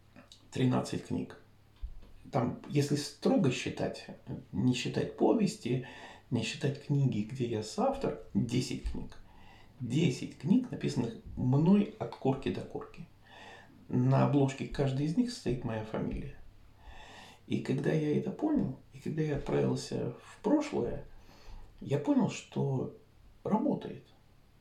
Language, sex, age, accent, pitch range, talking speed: Russian, male, 50-69, native, 105-160 Hz, 115 wpm